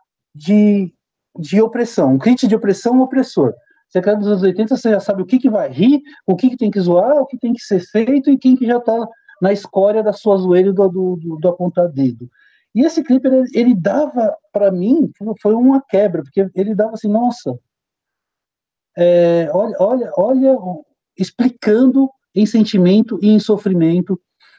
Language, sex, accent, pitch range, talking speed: Portuguese, male, Brazilian, 160-220 Hz, 190 wpm